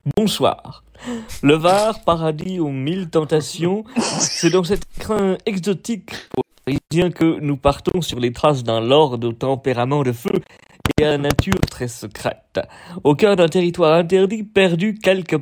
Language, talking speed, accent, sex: French, 150 wpm, French, male